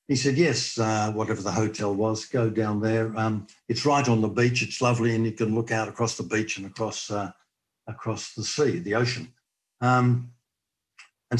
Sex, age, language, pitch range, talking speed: male, 60-79, English, 105-125 Hz, 195 wpm